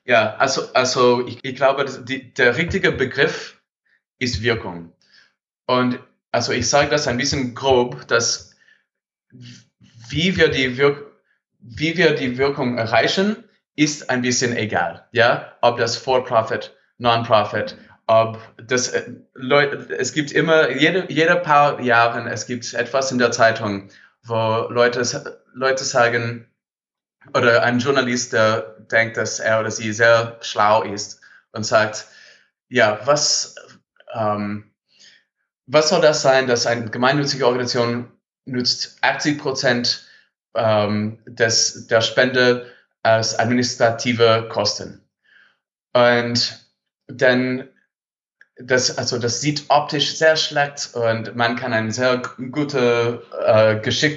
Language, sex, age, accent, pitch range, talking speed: German, male, 20-39, German, 115-135 Hz, 125 wpm